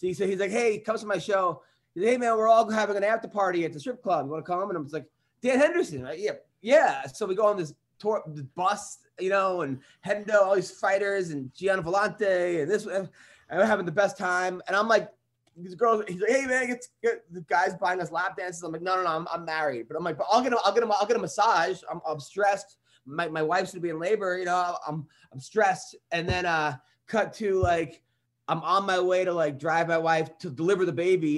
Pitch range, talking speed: 165-225 Hz, 255 wpm